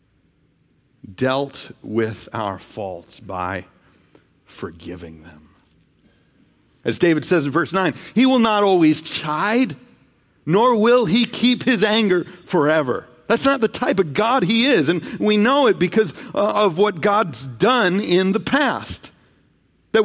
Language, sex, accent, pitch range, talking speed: English, male, American, 130-215 Hz, 140 wpm